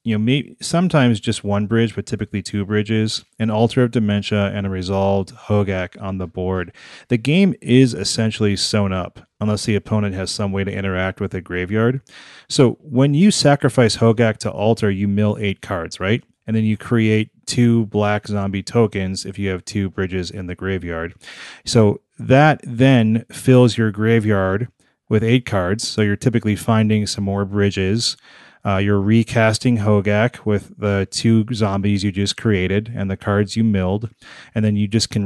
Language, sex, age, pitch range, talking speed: English, male, 30-49, 100-115 Hz, 175 wpm